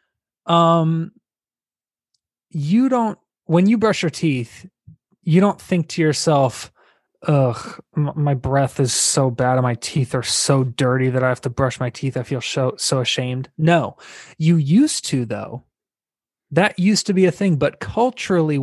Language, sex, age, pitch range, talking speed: English, male, 20-39, 130-170 Hz, 160 wpm